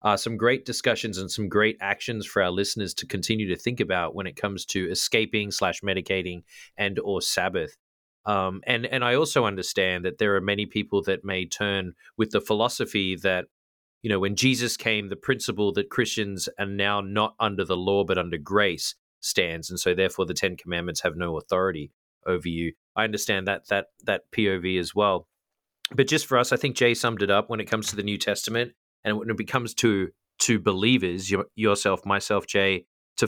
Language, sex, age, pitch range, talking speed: English, male, 30-49, 95-110 Hz, 195 wpm